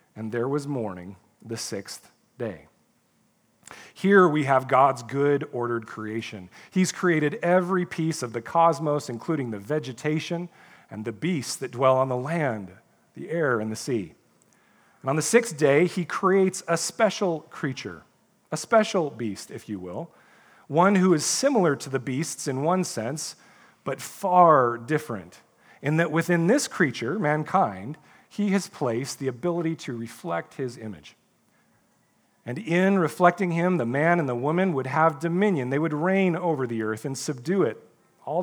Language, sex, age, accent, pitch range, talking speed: English, male, 40-59, American, 120-175 Hz, 160 wpm